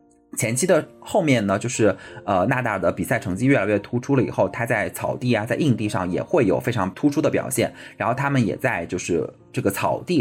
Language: Chinese